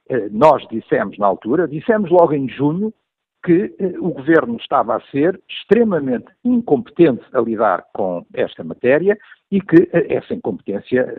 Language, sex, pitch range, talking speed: Portuguese, male, 115-170 Hz, 135 wpm